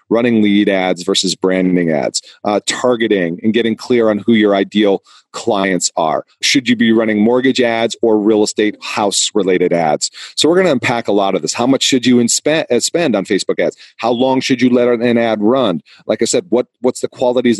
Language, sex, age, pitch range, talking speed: English, male, 40-59, 100-125 Hz, 215 wpm